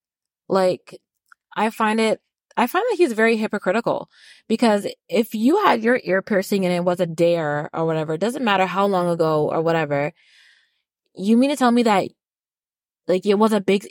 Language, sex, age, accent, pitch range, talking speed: English, female, 20-39, American, 180-245 Hz, 185 wpm